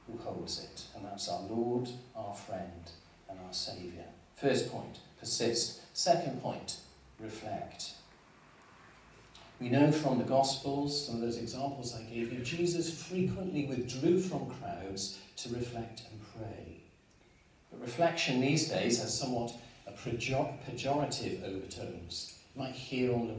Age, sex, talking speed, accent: 40-59, male, 135 wpm, British